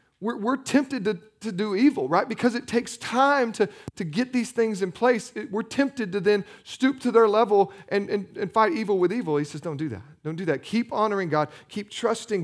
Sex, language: male, English